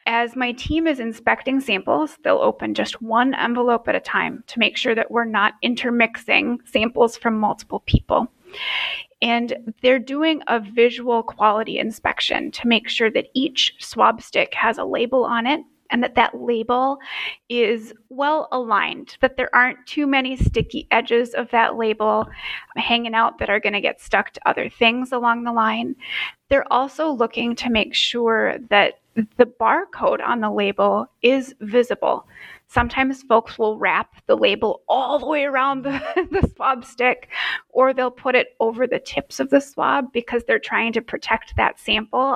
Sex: female